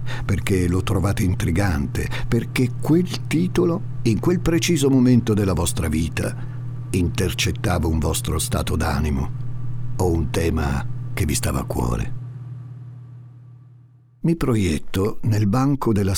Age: 60-79